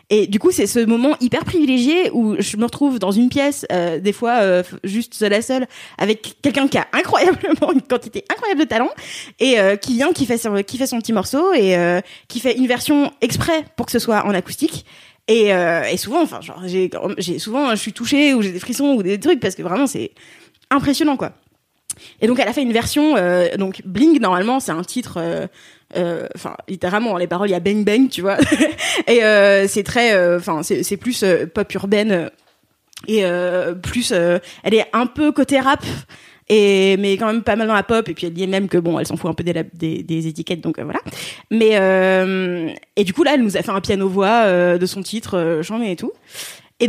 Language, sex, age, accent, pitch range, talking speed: French, female, 20-39, French, 185-245 Hz, 230 wpm